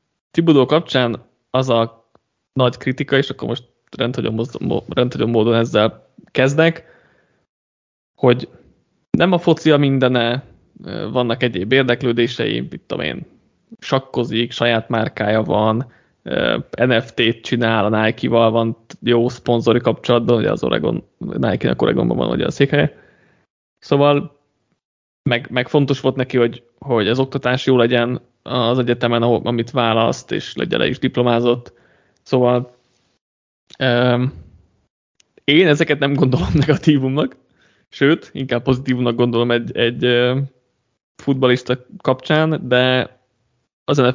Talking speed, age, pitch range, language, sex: 115 wpm, 20-39, 115-135 Hz, Hungarian, male